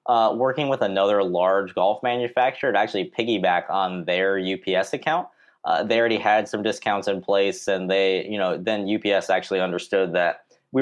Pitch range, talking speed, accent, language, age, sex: 90-105 Hz, 175 wpm, American, English, 20-39, male